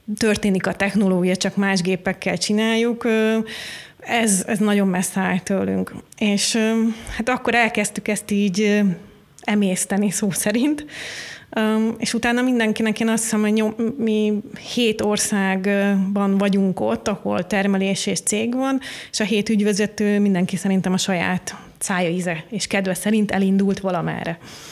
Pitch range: 195-225 Hz